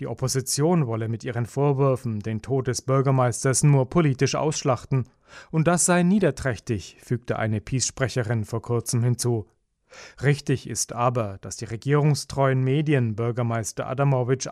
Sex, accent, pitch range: male, German, 120-150 Hz